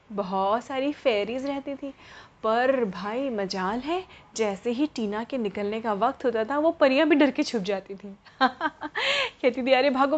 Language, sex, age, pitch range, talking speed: Hindi, female, 30-49, 215-275 Hz, 175 wpm